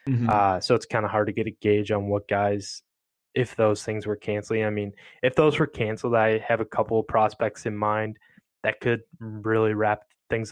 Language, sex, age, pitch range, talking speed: English, male, 10-29, 105-115 Hz, 210 wpm